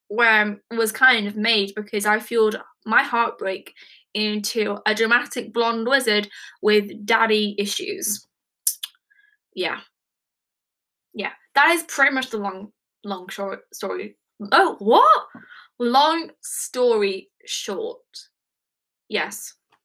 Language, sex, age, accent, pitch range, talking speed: English, female, 10-29, British, 215-295 Hz, 105 wpm